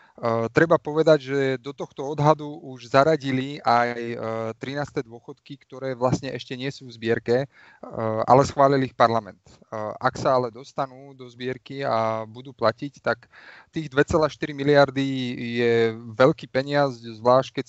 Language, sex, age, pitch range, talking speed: Slovak, male, 30-49, 120-140 Hz, 150 wpm